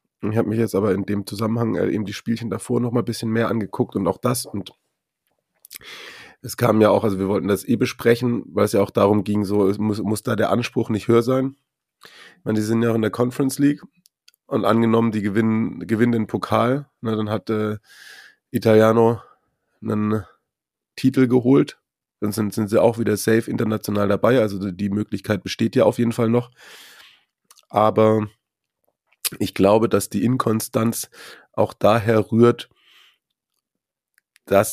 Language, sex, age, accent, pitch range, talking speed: German, male, 30-49, German, 105-115 Hz, 175 wpm